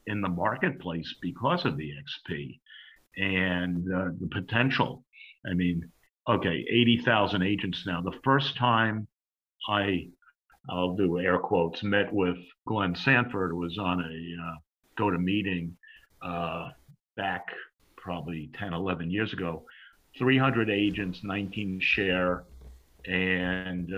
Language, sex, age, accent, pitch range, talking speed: English, male, 50-69, American, 90-105 Hz, 120 wpm